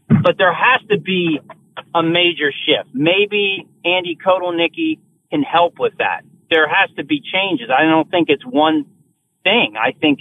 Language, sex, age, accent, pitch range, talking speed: English, male, 40-59, American, 155-205 Hz, 165 wpm